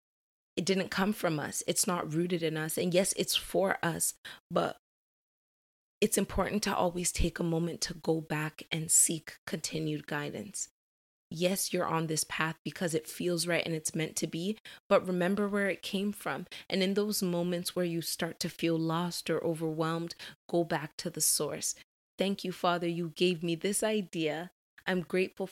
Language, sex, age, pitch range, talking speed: English, female, 20-39, 165-190 Hz, 180 wpm